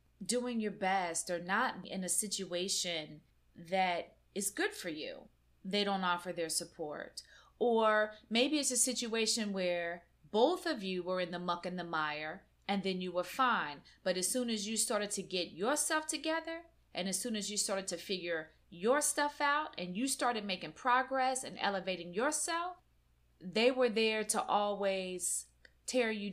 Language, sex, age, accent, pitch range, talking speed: English, female, 30-49, American, 180-255 Hz, 170 wpm